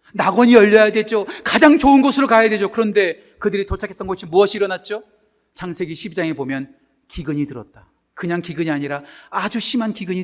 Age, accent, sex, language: 40-59, native, male, Korean